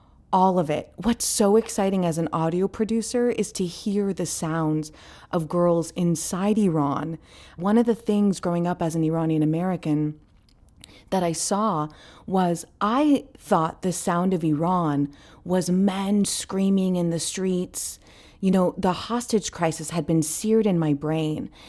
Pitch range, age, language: 160-205 Hz, 30-49, English